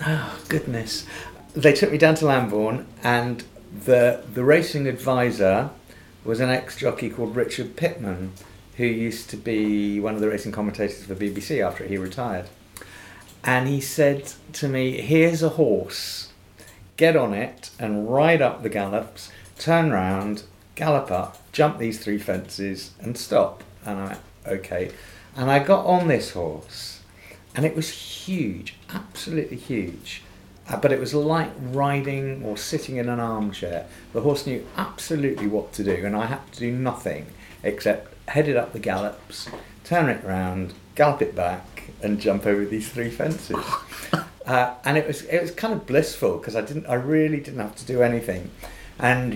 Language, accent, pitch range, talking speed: English, British, 100-140 Hz, 165 wpm